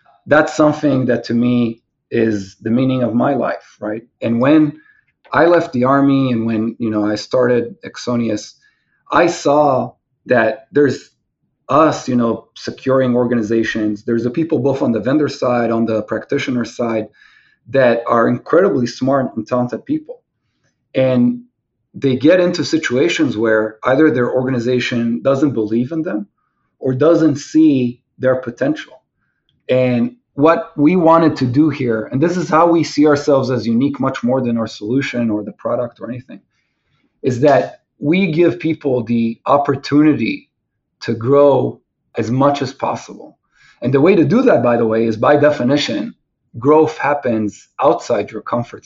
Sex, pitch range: male, 115-150 Hz